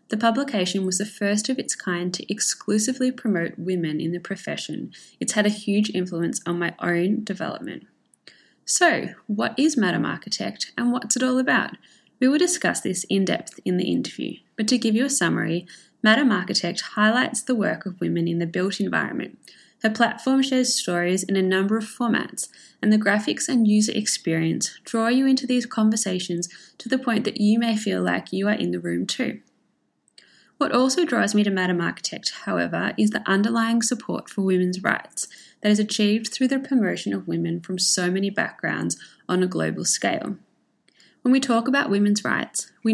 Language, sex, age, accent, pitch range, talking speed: English, female, 20-39, Australian, 185-245 Hz, 185 wpm